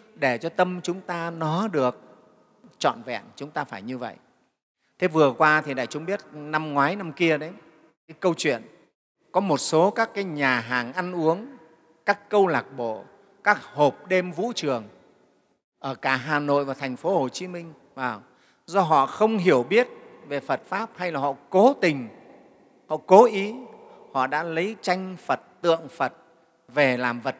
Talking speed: 180 wpm